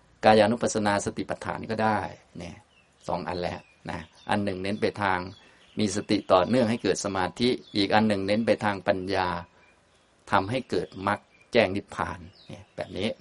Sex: male